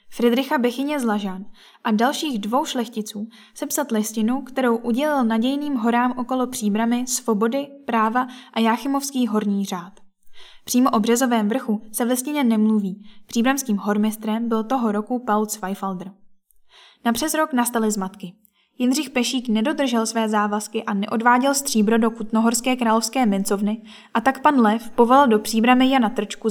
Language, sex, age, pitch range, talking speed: Czech, female, 10-29, 215-255 Hz, 145 wpm